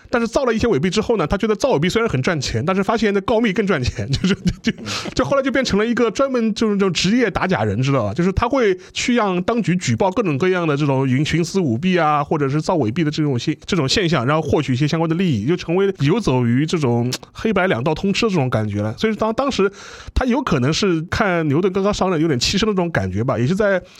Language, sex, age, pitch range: Chinese, male, 30-49, 140-200 Hz